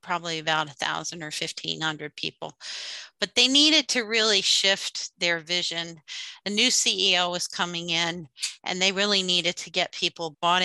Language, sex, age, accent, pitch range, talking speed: English, female, 50-69, American, 165-195 Hz, 160 wpm